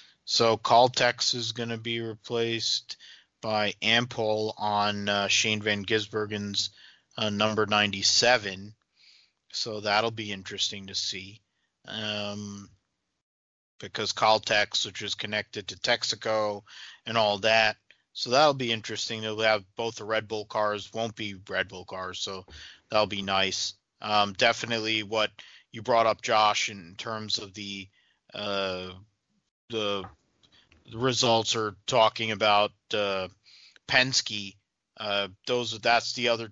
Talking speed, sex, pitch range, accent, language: 130 wpm, male, 100-115 Hz, American, English